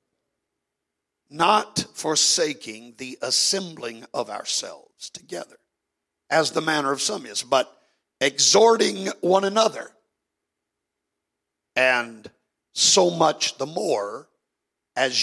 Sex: male